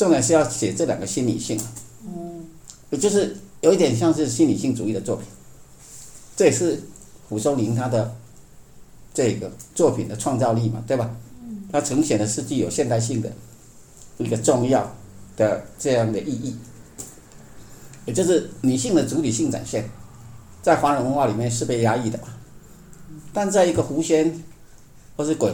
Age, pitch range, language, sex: 50-69, 115-140 Hz, Chinese, male